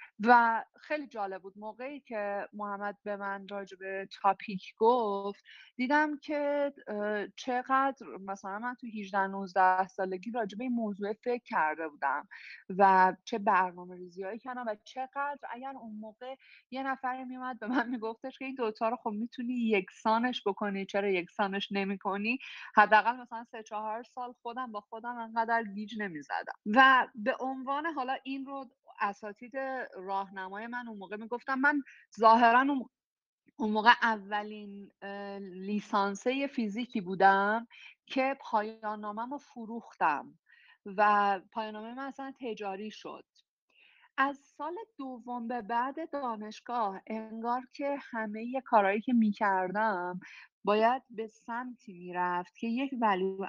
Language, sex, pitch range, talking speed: Persian, female, 200-250 Hz, 125 wpm